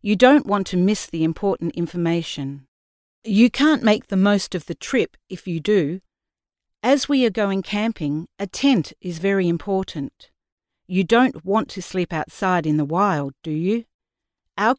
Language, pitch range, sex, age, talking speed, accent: English, 165-220 Hz, female, 50-69, 165 wpm, Australian